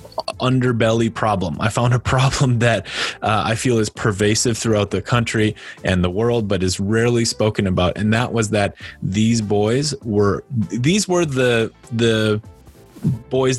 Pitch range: 100-125 Hz